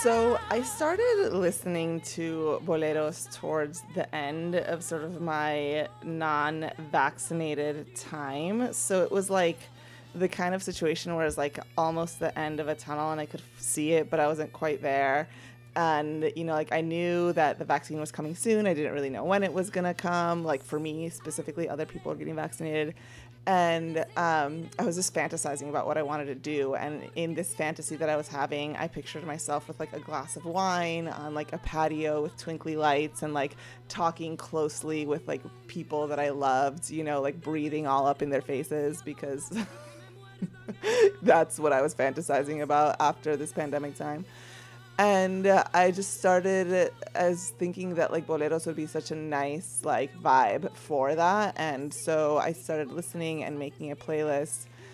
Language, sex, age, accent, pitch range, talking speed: English, female, 20-39, American, 145-165 Hz, 180 wpm